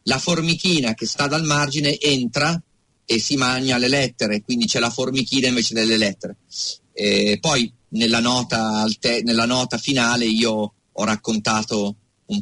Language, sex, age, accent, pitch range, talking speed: Italian, male, 40-59, native, 115-150 Hz, 145 wpm